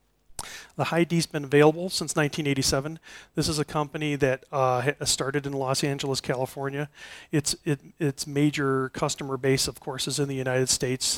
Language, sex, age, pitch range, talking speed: English, male, 40-59, 130-150 Hz, 165 wpm